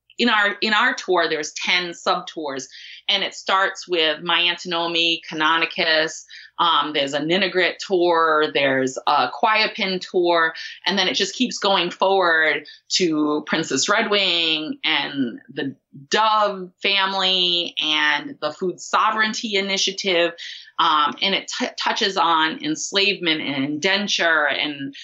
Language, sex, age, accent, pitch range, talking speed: English, female, 30-49, American, 160-195 Hz, 130 wpm